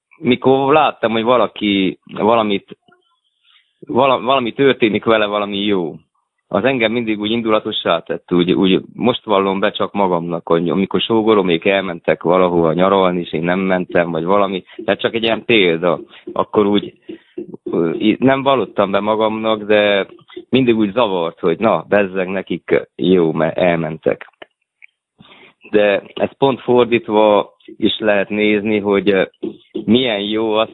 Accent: Finnish